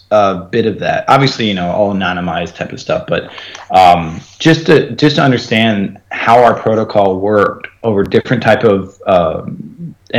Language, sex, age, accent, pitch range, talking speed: English, male, 30-49, American, 100-130 Hz, 165 wpm